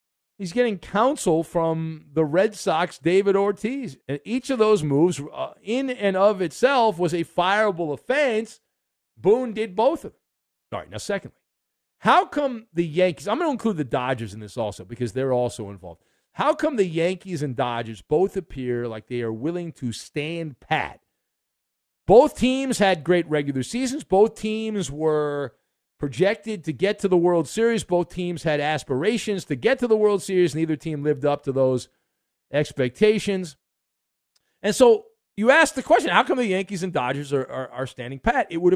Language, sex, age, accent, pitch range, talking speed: English, male, 50-69, American, 145-215 Hz, 180 wpm